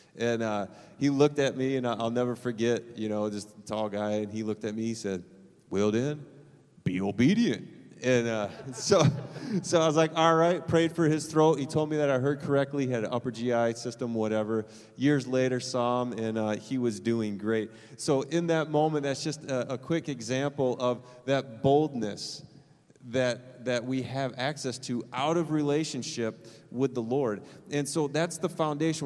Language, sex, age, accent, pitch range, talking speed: English, male, 30-49, American, 120-150 Hz, 190 wpm